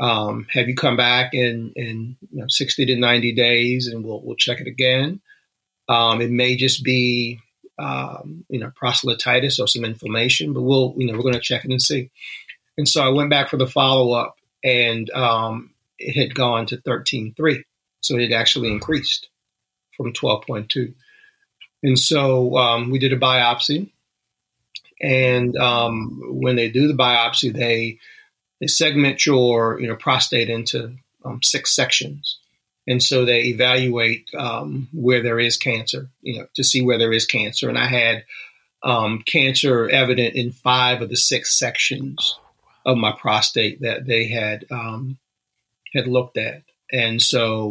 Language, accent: English, American